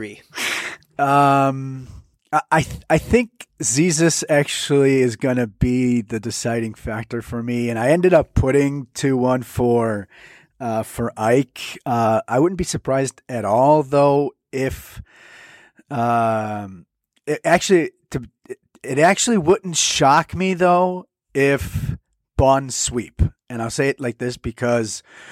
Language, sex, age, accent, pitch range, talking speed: English, male, 30-49, American, 120-140 Hz, 130 wpm